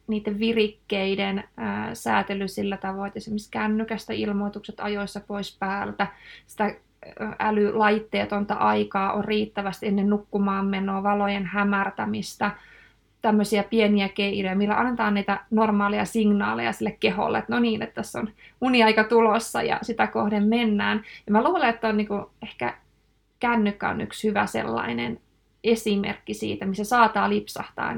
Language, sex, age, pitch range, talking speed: Finnish, female, 20-39, 200-220 Hz, 135 wpm